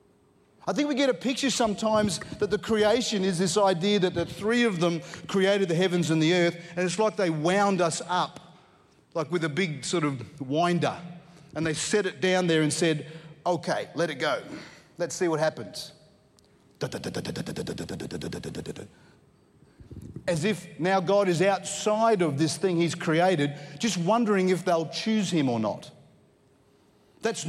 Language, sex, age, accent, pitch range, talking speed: English, male, 40-59, Australian, 155-190 Hz, 160 wpm